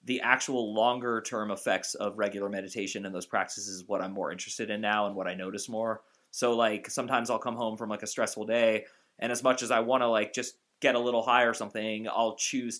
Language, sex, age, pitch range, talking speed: English, male, 20-39, 100-120 Hz, 240 wpm